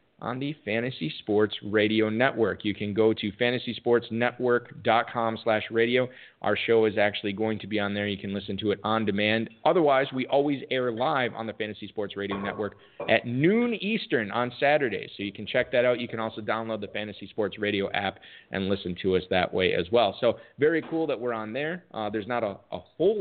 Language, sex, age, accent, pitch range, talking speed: English, male, 30-49, American, 105-135 Hz, 210 wpm